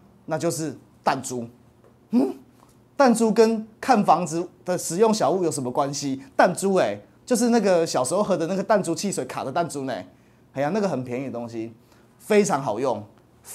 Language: Chinese